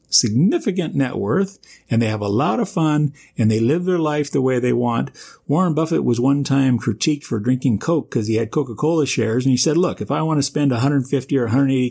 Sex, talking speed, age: male, 225 wpm, 50-69